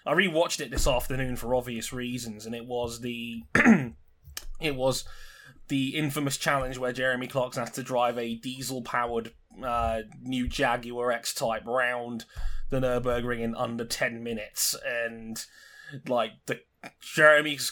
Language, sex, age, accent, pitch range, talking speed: English, male, 20-39, British, 125-175 Hz, 135 wpm